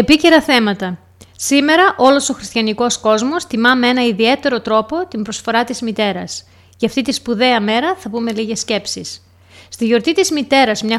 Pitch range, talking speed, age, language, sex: 210-265 Hz, 165 wpm, 30-49, Greek, female